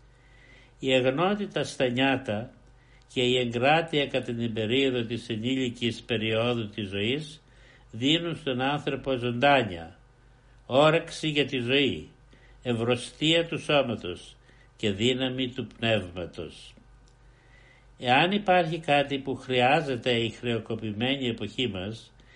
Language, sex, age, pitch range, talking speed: Greek, male, 60-79, 120-140 Hz, 105 wpm